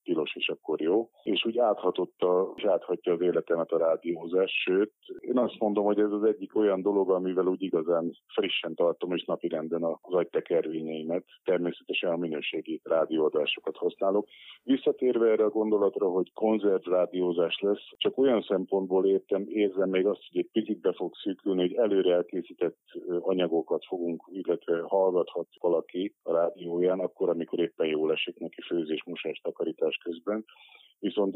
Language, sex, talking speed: Hungarian, male, 140 wpm